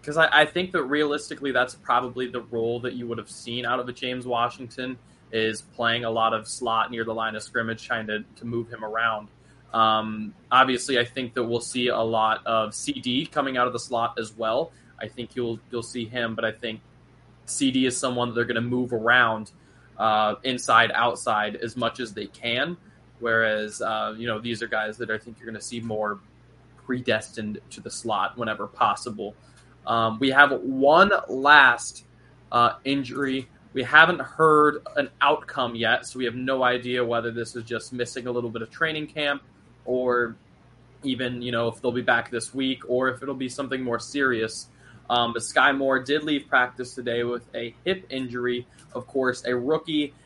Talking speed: 195 wpm